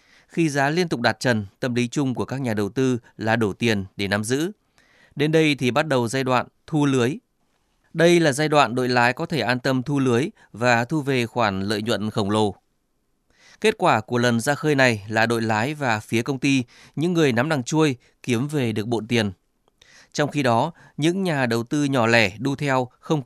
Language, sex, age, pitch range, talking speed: Vietnamese, male, 20-39, 115-140 Hz, 220 wpm